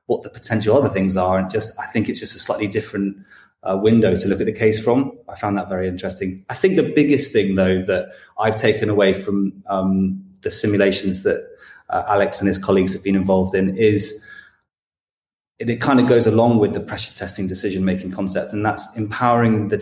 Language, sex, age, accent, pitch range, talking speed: English, male, 20-39, British, 95-120 Hz, 210 wpm